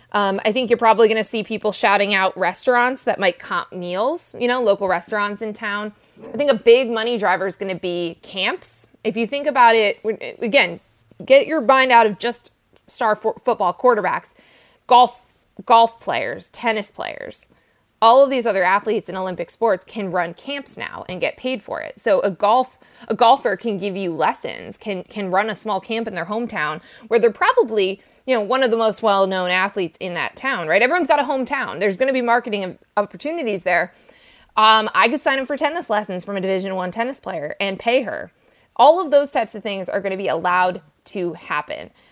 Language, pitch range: English, 195-255 Hz